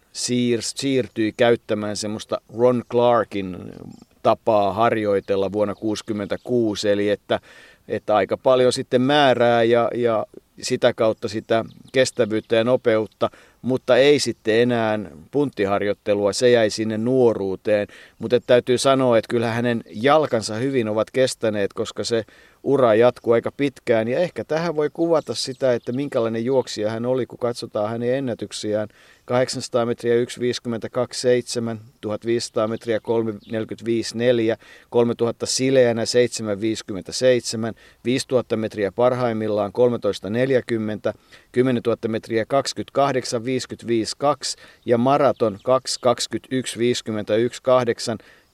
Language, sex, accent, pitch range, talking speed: Finnish, male, native, 110-125 Hz, 105 wpm